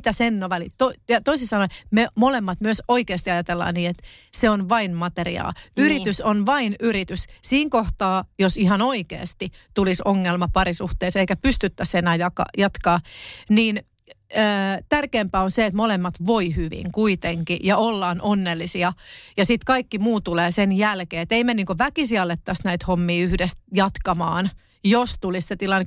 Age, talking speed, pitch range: 30-49, 155 wpm, 180-230 Hz